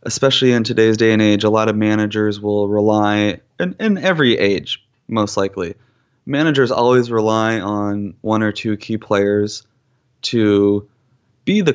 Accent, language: American, English